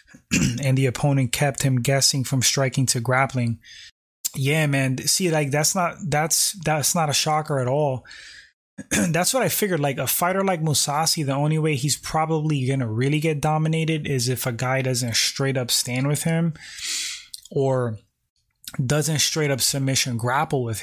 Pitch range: 130-155 Hz